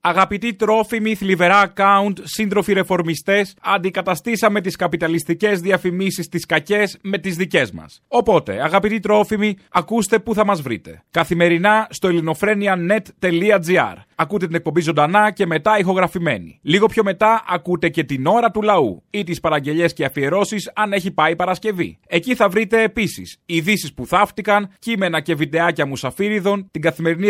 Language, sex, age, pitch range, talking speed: Greek, male, 30-49, 165-205 Hz, 145 wpm